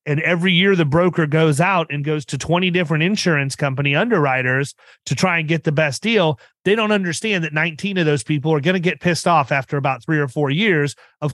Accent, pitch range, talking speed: American, 145-180 Hz, 230 wpm